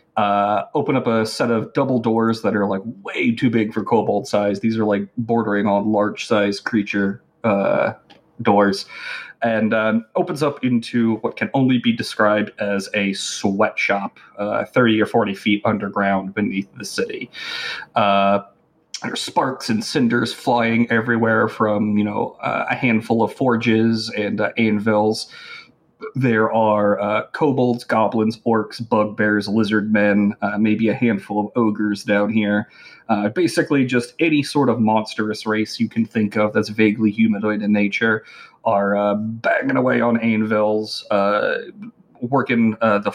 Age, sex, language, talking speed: 30-49, male, English, 155 wpm